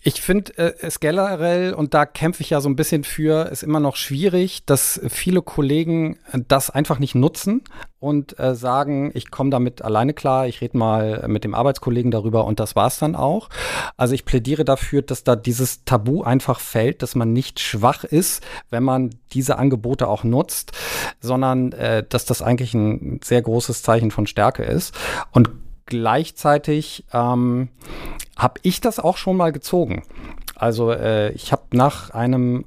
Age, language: 40-59, German